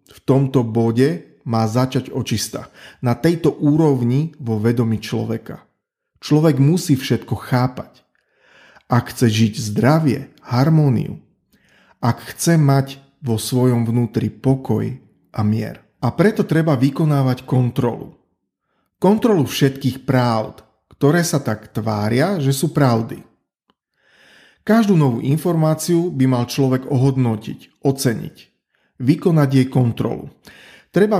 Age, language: 40-59, Slovak